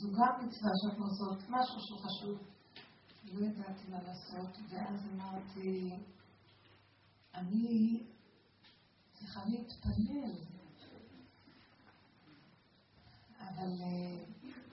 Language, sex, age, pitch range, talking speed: Hebrew, female, 40-59, 190-230 Hz, 75 wpm